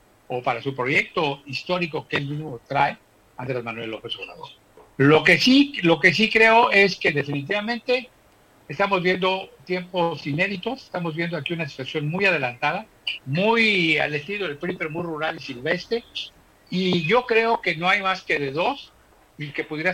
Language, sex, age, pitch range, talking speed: Spanish, male, 60-79, 140-180 Hz, 170 wpm